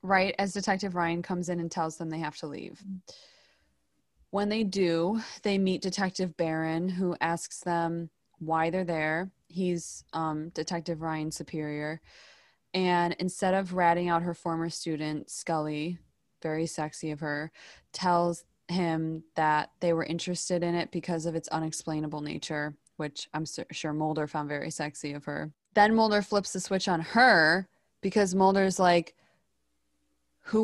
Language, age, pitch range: English, 20-39, 155-185 Hz